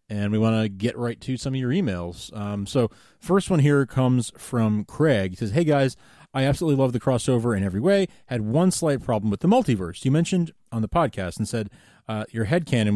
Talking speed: 220 wpm